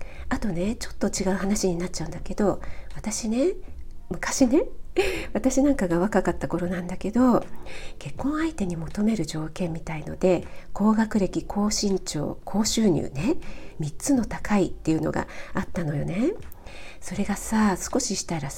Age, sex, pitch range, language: 50-69, female, 175-225 Hz, Japanese